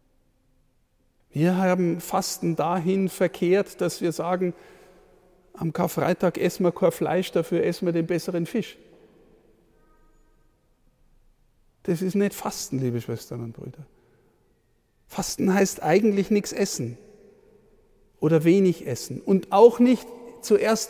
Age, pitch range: 50-69, 175-215 Hz